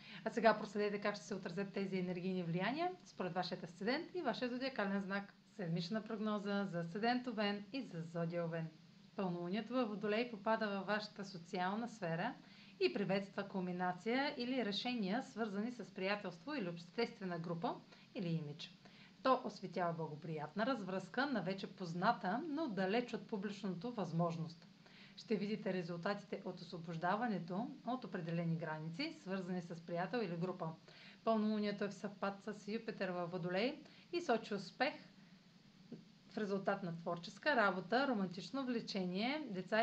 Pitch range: 180-225 Hz